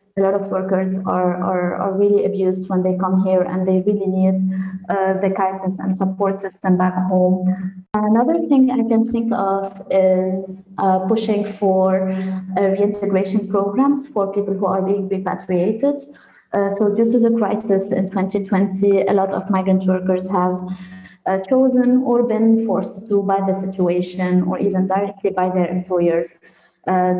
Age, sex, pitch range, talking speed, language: 20-39, female, 185-200 Hz, 160 wpm, English